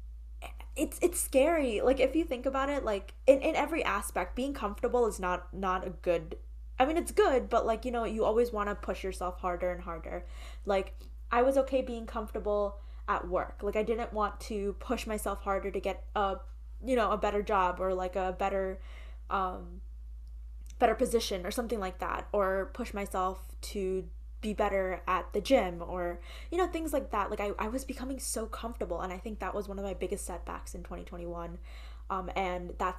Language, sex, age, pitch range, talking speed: English, female, 10-29, 180-240 Hz, 200 wpm